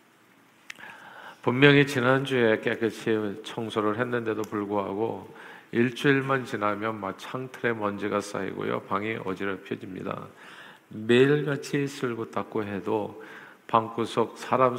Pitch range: 100-120 Hz